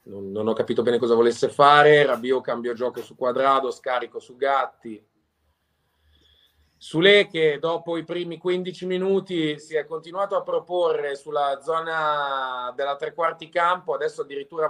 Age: 30-49